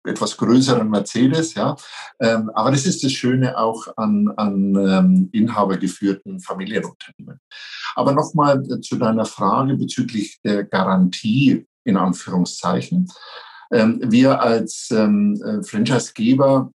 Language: German